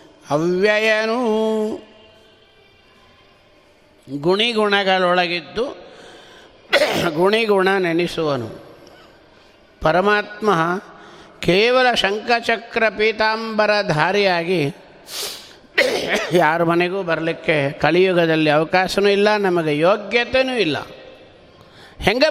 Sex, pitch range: male, 170-235 Hz